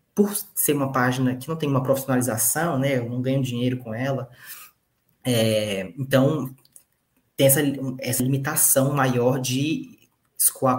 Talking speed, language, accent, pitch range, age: 140 wpm, Portuguese, Brazilian, 120-135 Hz, 20-39